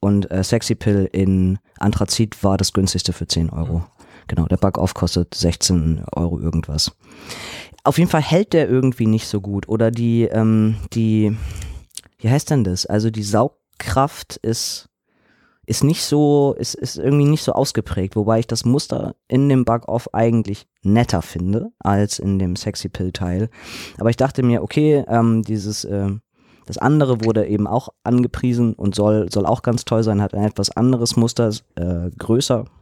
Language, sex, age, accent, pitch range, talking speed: German, male, 20-39, German, 100-125 Hz, 170 wpm